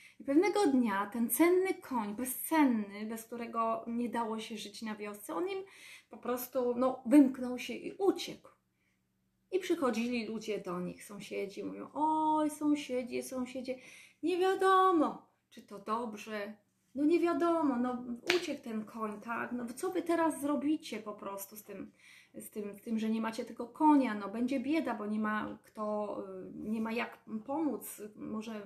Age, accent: 20-39, native